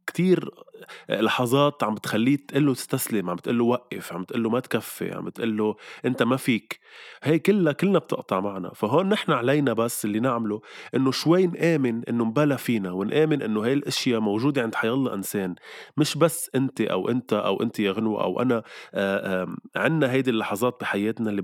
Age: 20-39